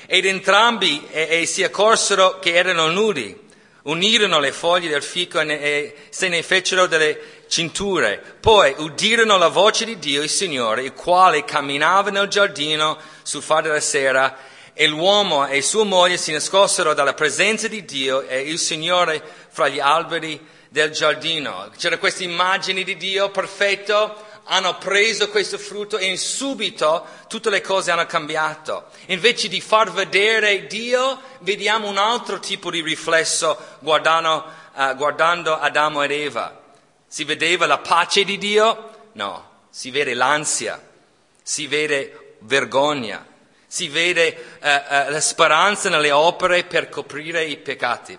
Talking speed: 145 wpm